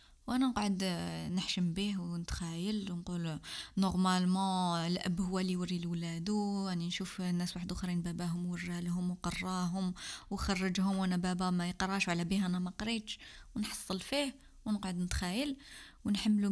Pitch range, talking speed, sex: 175-215 Hz, 135 wpm, female